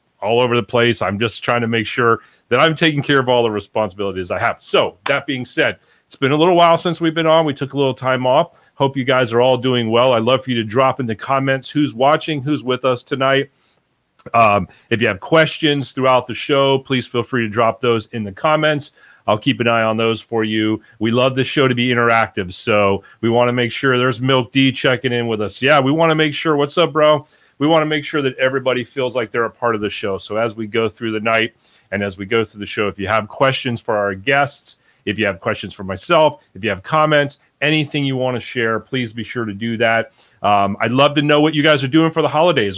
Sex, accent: male, American